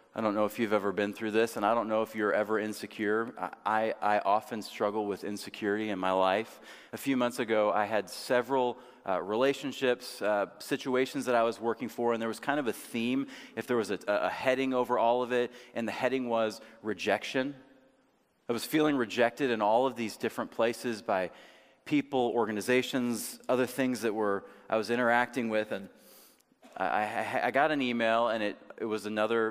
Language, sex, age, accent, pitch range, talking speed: English, male, 30-49, American, 105-125 Hz, 195 wpm